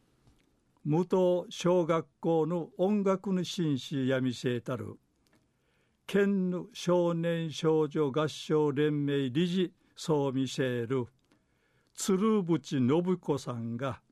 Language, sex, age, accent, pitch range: Japanese, male, 60-79, native, 135-180 Hz